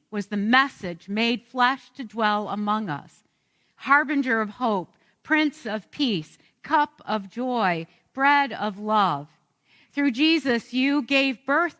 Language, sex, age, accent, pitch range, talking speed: English, female, 50-69, American, 185-275 Hz, 130 wpm